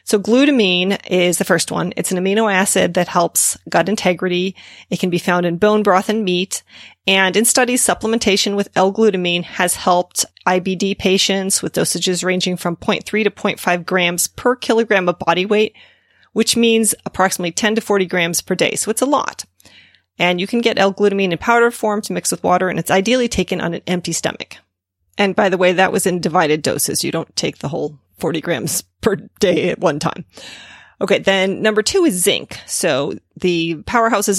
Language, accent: English, American